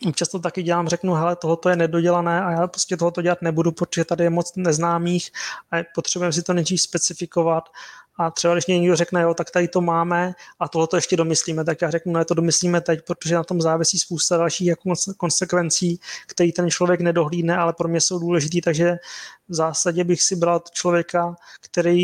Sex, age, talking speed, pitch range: male, 20-39, 195 wpm, 165-180 Hz